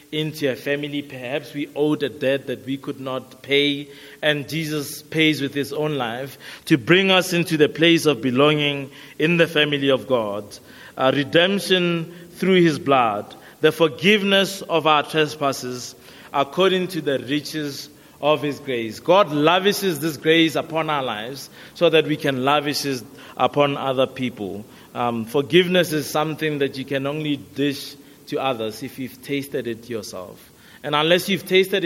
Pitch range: 125-155 Hz